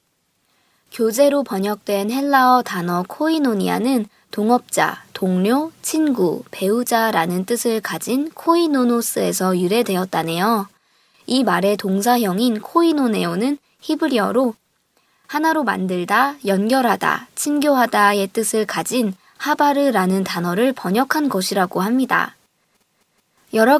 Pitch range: 195-265 Hz